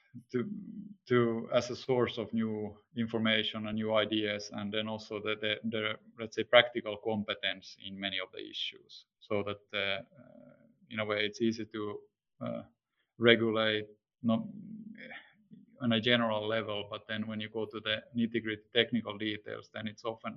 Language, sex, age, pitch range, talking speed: Finnish, male, 20-39, 110-125 Hz, 165 wpm